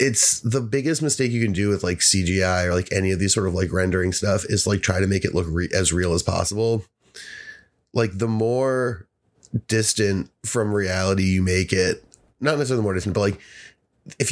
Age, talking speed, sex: 30-49, 195 wpm, male